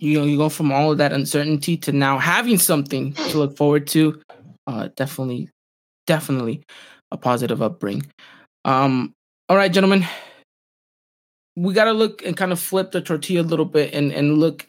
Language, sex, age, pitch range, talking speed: English, male, 20-39, 140-170 Hz, 175 wpm